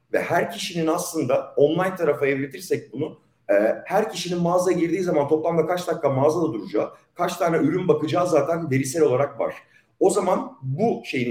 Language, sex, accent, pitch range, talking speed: Turkish, male, native, 155-180 Hz, 160 wpm